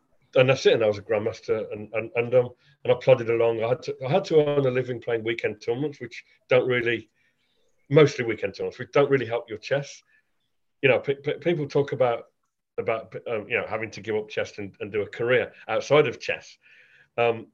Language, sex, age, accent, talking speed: English, male, 40-59, British, 220 wpm